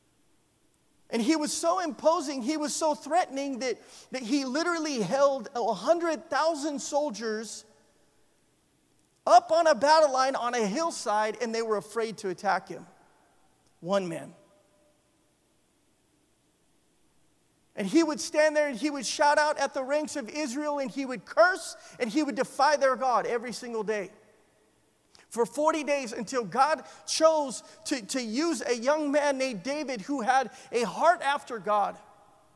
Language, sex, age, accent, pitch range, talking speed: English, male, 40-59, American, 240-320 Hz, 150 wpm